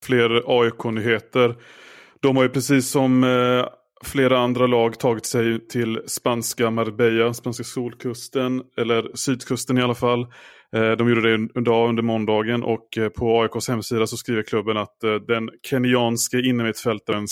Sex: male